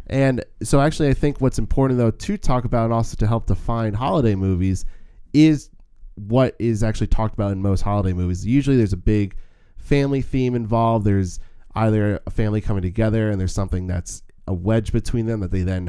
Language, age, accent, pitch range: English, 20-39, American, 95-115 Hz